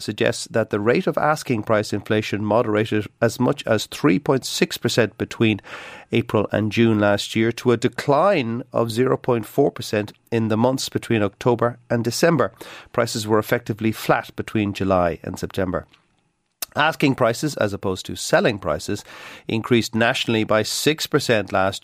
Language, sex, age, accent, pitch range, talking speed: English, male, 40-59, Irish, 100-130 Hz, 140 wpm